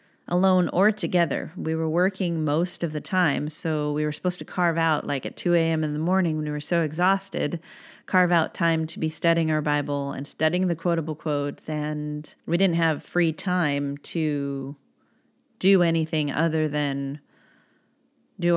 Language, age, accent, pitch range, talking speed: English, 30-49, American, 155-190 Hz, 175 wpm